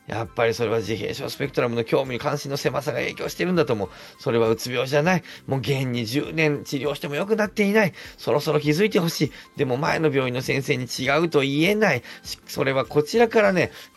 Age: 40-59